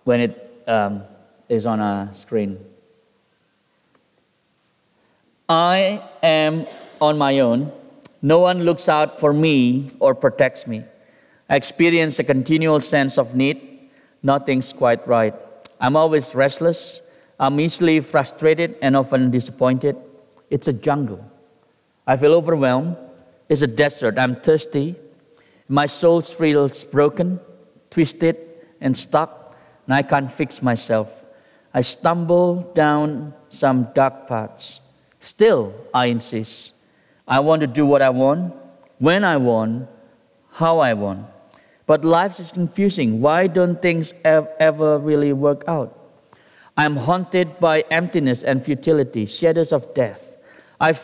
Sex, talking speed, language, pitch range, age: male, 125 wpm, English, 130-165 Hz, 50-69